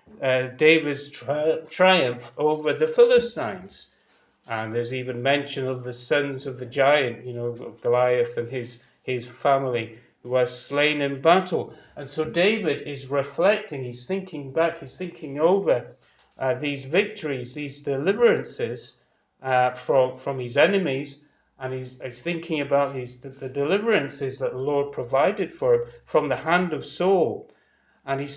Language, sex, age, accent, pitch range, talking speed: English, male, 40-59, British, 125-160 Hz, 150 wpm